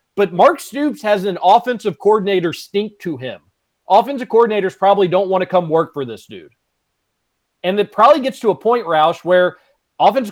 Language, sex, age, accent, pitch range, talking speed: English, male, 30-49, American, 180-250 Hz, 180 wpm